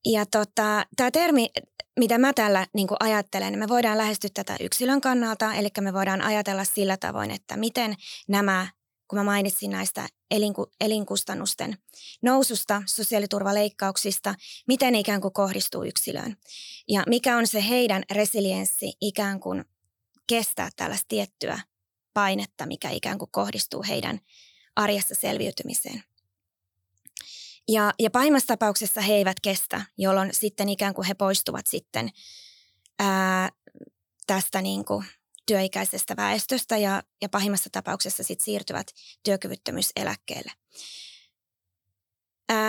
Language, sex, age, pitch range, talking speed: Finnish, female, 20-39, 190-230 Hz, 115 wpm